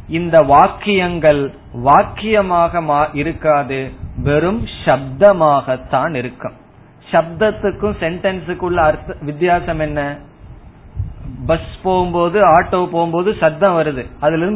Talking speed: 60 wpm